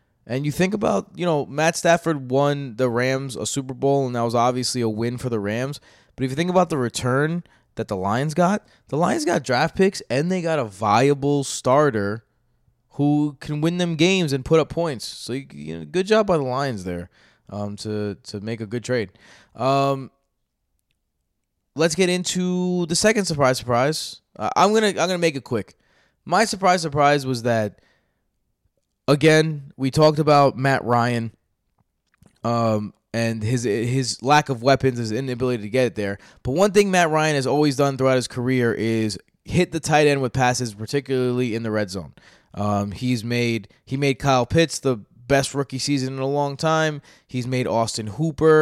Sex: male